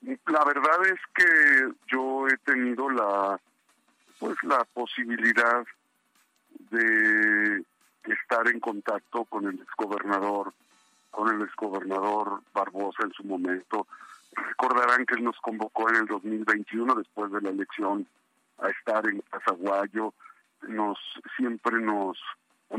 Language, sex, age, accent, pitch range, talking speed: Spanish, male, 50-69, Mexican, 105-120 Hz, 125 wpm